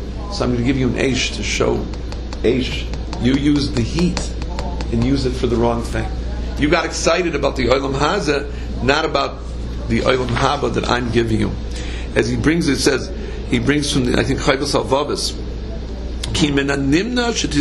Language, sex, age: English, male, 50-69